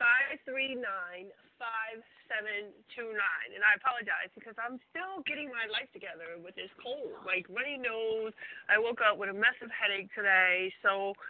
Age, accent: 30-49, American